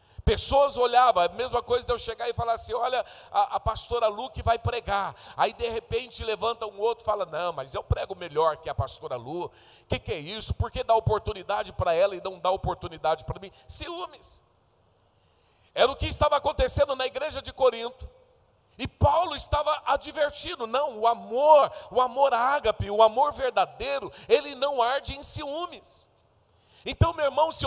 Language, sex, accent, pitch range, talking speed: Portuguese, male, Brazilian, 240-295 Hz, 180 wpm